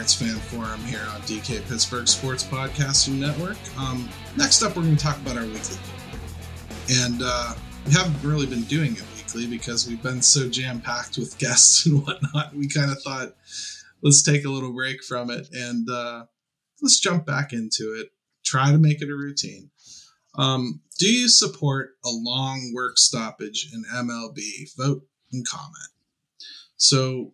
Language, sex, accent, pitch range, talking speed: English, male, American, 120-150 Hz, 165 wpm